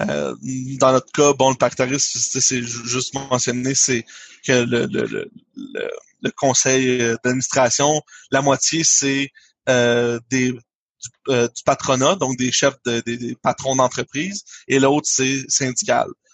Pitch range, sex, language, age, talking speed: 125-140 Hz, male, French, 30-49, 150 wpm